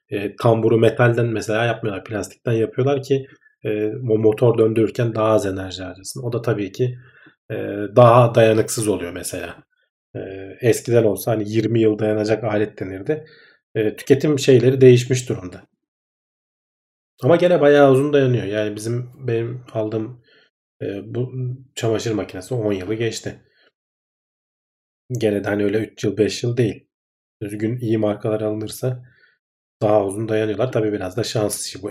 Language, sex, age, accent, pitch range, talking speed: Turkish, male, 40-59, native, 105-130 Hz, 140 wpm